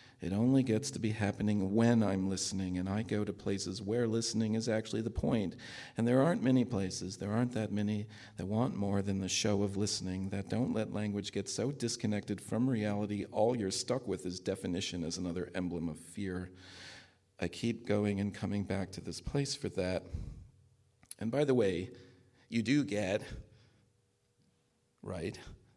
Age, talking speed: 40-59, 175 wpm